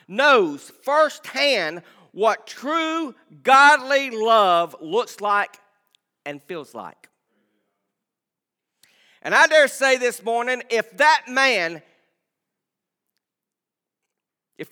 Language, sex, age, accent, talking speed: English, male, 50-69, American, 85 wpm